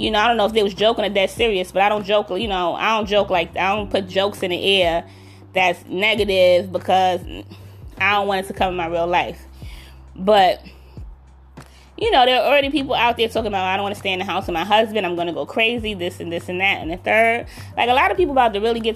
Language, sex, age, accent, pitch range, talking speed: English, female, 20-39, American, 180-230 Hz, 270 wpm